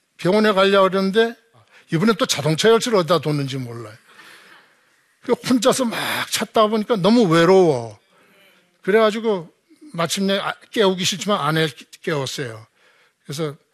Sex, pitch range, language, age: male, 140-185 Hz, Korean, 60-79